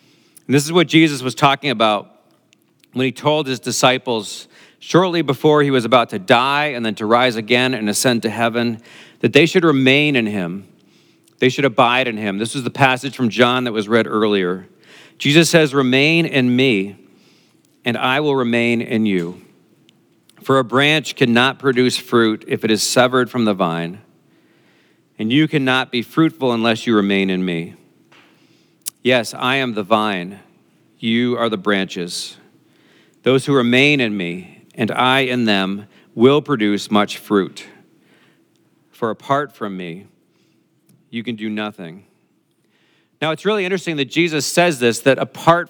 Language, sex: English, male